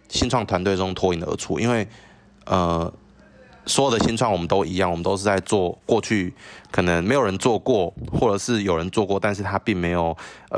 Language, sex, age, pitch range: Chinese, male, 20-39, 90-105 Hz